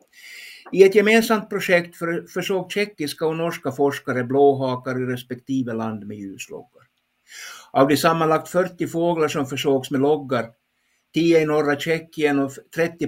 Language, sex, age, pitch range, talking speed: Swedish, male, 60-79, 125-155 Hz, 140 wpm